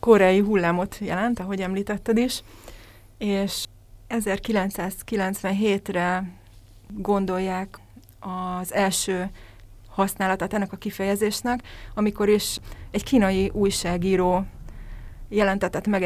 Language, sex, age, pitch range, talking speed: Hungarian, female, 30-49, 180-205 Hz, 80 wpm